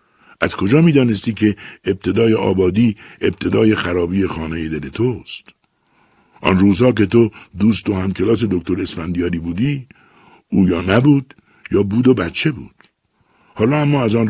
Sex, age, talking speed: male, 60-79, 150 wpm